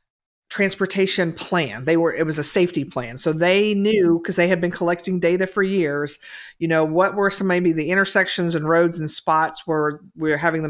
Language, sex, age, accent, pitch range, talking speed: English, female, 50-69, American, 155-190 Hz, 200 wpm